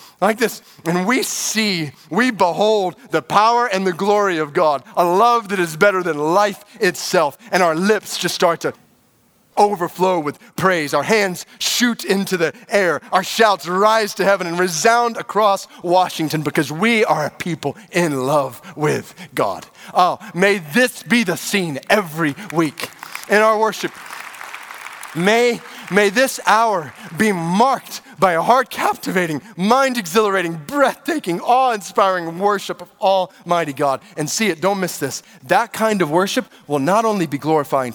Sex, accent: male, American